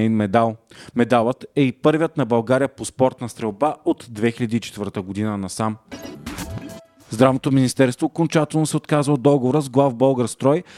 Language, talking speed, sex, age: Bulgarian, 140 wpm, male, 30-49